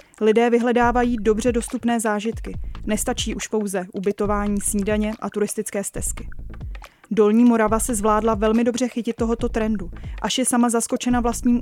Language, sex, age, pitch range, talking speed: Czech, female, 20-39, 215-240 Hz, 140 wpm